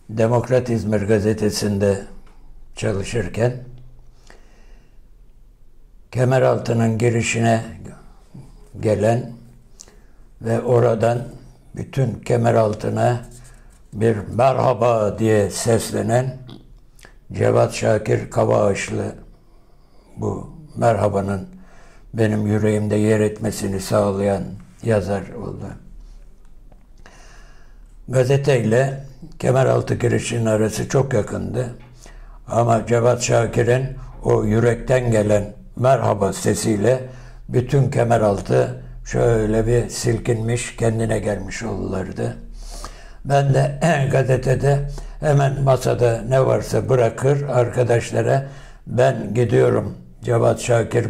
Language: Turkish